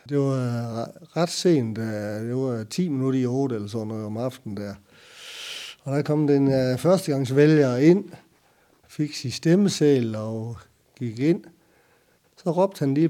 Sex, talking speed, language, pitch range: male, 140 wpm, Danish, 120-160 Hz